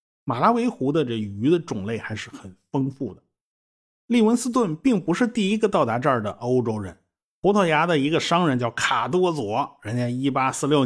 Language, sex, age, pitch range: Chinese, male, 50-69, 115-180 Hz